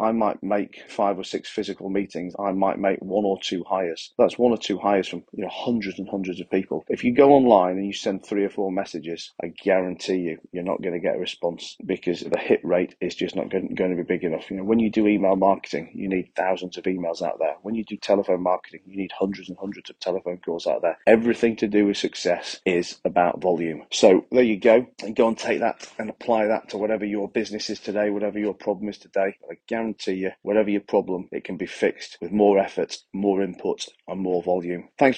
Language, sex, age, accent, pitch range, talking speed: English, male, 30-49, British, 95-110 Hz, 240 wpm